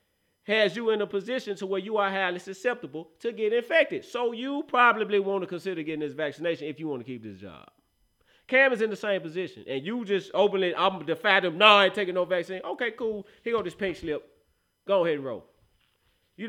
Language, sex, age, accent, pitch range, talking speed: English, male, 30-49, American, 170-240 Hz, 230 wpm